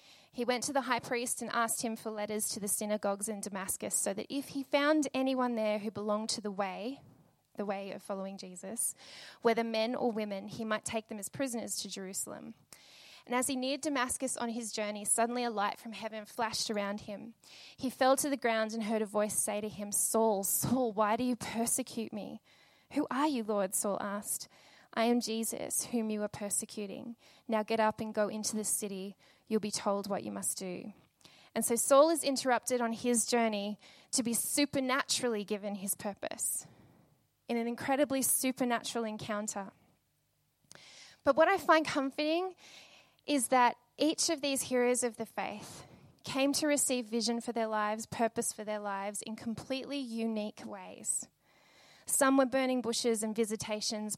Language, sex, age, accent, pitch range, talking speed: English, female, 10-29, Australian, 210-255 Hz, 180 wpm